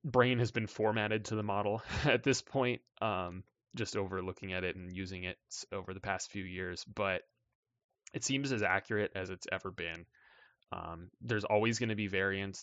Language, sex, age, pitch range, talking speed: English, male, 20-39, 95-120 Hz, 185 wpm